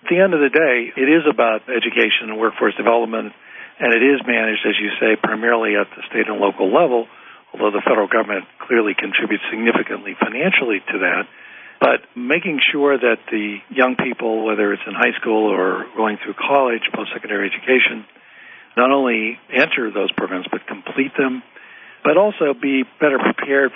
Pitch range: 110-130 Hz